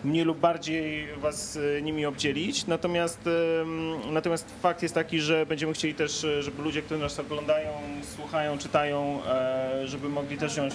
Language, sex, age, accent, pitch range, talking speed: Polish, male, 30-49, native, 140-170 Hz, 145 wpm